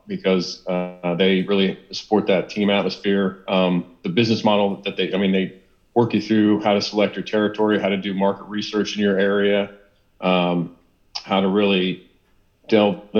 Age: 40-59